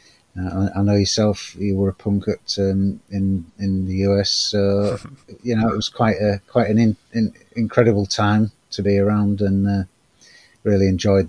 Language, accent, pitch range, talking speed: English, British, 100-115 Hz, 180 wpm